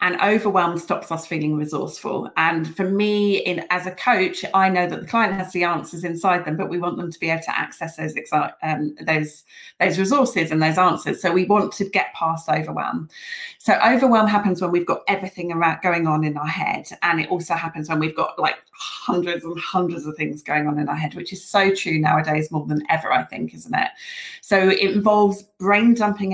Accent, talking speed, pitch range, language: British, 215 wpm, 170-205 Hz, English